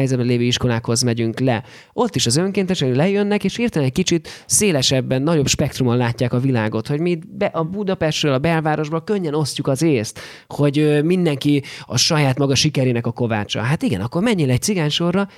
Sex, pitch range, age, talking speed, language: male, 125-165 Hz, 20-39, 170 wpm, Hungarian